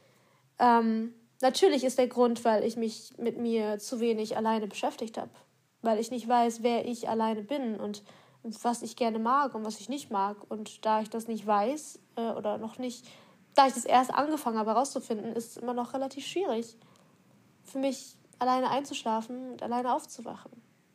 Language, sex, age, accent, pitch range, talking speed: German, female, 20-39, German, 220-250 Hz, 185 wpm